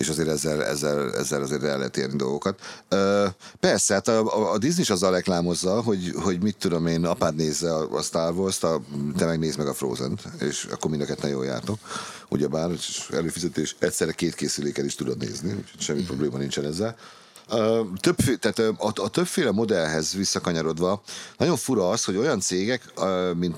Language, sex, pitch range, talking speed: Hungarian, male, 80-105 Hz, 175 wpm